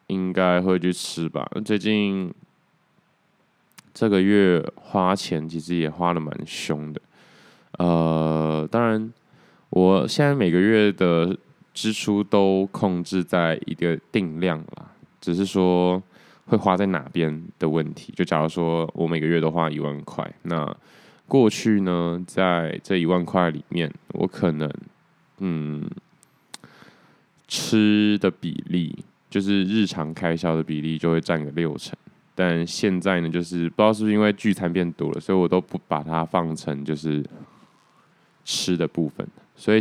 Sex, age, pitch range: male, 20-39, 80-95 Hz